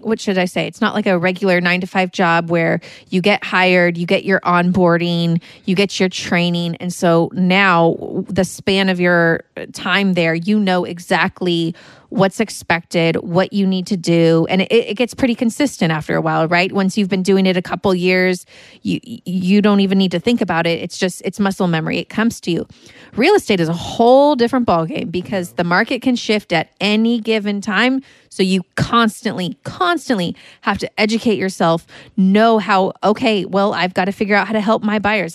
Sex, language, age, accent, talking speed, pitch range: female, English, 30-49, American, 200 wpm, 180-215 Hz